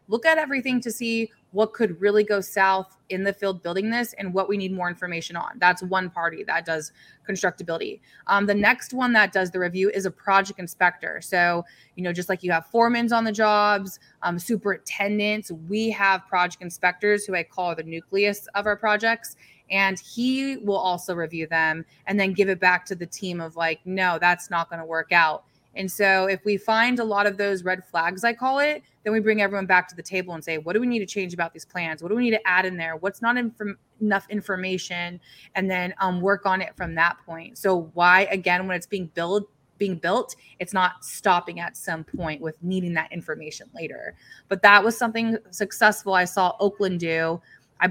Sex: female